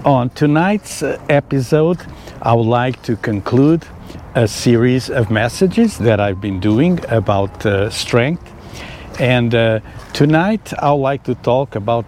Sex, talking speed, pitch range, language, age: male, 140 wpm, 110-140 Hz, English, 60-79